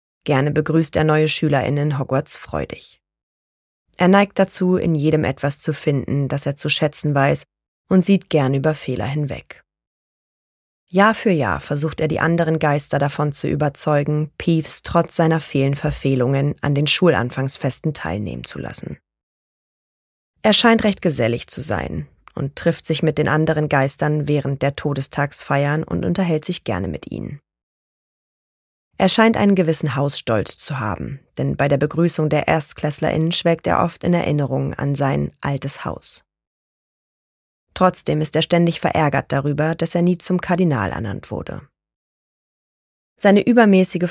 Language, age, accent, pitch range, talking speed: German, 30-49, German, 135-165 Hz, 145 wpm